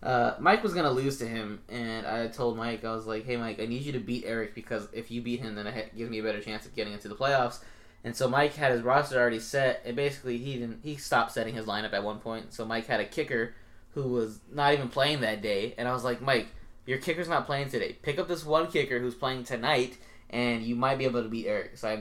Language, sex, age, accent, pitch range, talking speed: English, male, 20-39, American, 115-145 Hz, 270 wpm